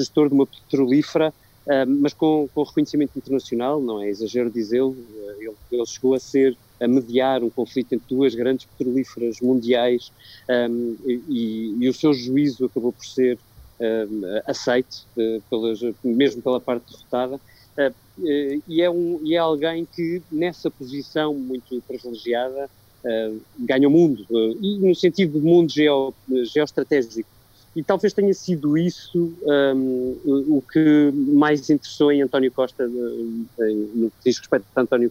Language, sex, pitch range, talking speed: Portuguese, male, 120-145 Hz, 150 wpm